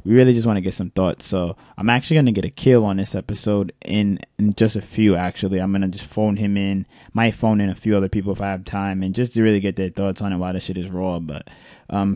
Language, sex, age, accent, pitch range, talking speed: English, male, 20-39, American, 95-110 Hz, 290 wpm